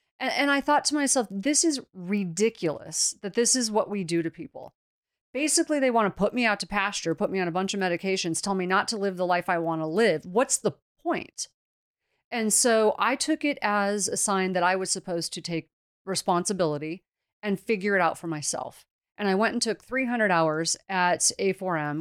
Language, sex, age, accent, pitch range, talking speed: English, female, 30-49, American, 180-240 Hz, 205 wpm